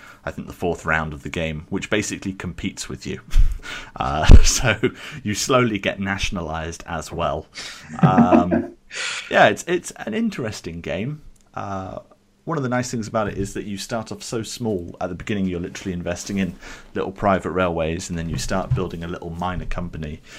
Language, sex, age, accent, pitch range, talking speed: English, male, 30-49, British, 80-100 Hz, 180 wpm